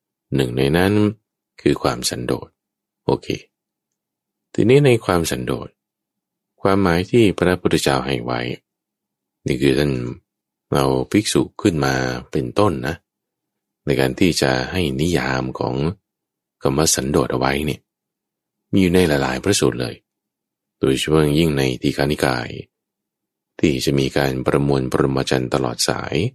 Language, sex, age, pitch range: English, male, 20-39, 65-90 Hz